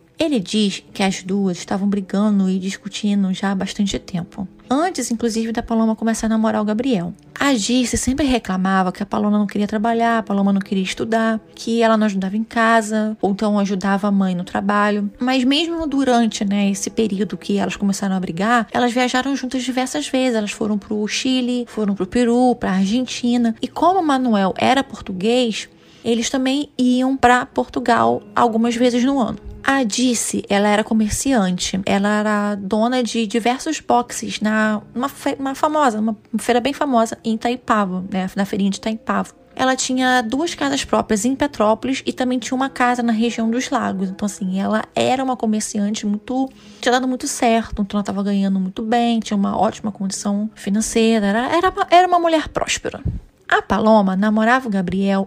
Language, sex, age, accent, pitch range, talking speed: Portuguese, female, 20-39, Brazilian, 205-255 Hz, 185 wpm